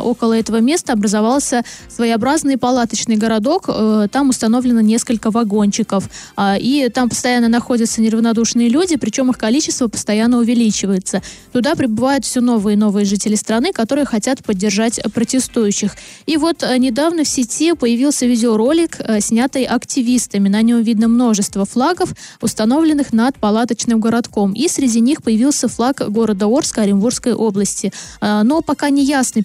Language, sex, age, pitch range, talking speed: Russian, female, 20-39, 220-260 Hz, 130 wpm